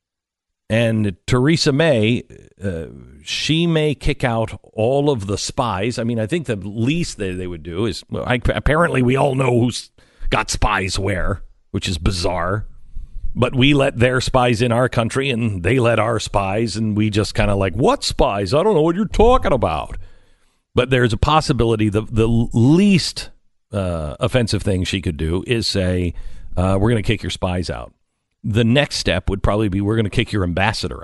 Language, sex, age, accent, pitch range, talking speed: English, male, 50-69, American, 90-120 Hz, 190 wpm